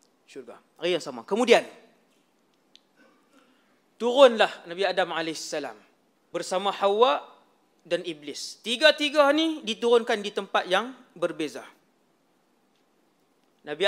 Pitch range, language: 165-235 Hz, Malay